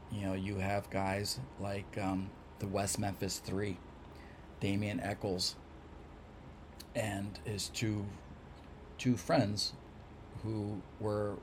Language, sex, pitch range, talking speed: English, male, 85-105 Hz, 105 wpm